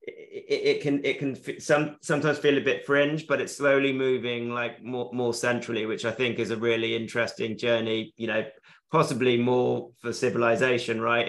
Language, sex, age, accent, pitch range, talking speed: English, male, 30-49, British, 115-130 Hz, 185 wpm